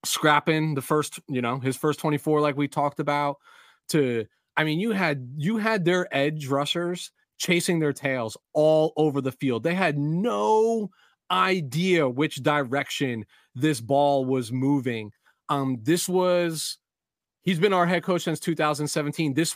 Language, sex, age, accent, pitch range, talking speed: English, male, 30-49, American, 140-175 Hz, 155 wpm